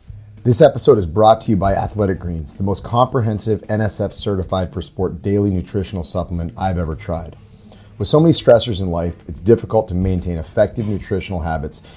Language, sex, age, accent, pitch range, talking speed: English, male, 30-49, American, 85-110 Hz, 175 wpm